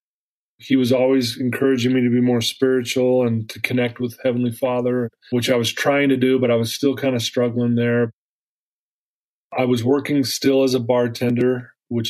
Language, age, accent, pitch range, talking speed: English, 30-49, American, 120-130 Hz, 185 wpm